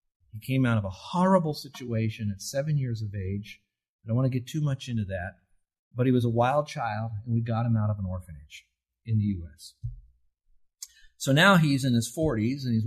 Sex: male